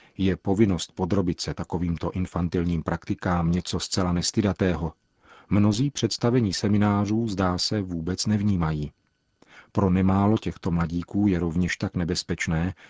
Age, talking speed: 40-59, 115 wpm